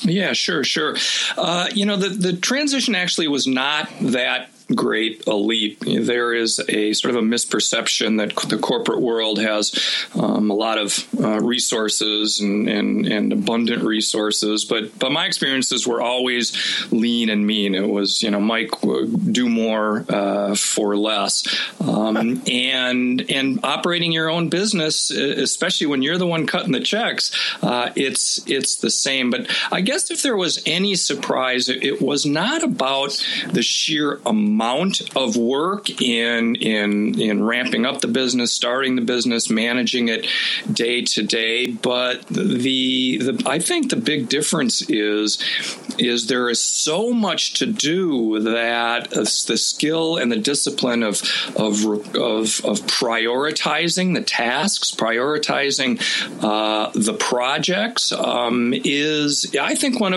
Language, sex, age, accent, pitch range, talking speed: English, male, 40-59, American, 110-165 Hz, 145 wpm